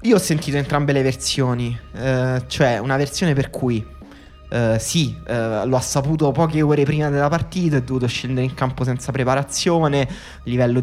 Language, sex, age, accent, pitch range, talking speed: Italian, male, 20-39, native, 115-140 Hz, 170 wpm